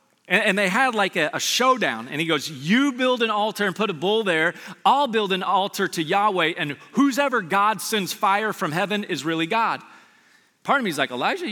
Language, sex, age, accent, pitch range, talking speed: English, male, 40-59, American, 155-225 Hz, 210 wpm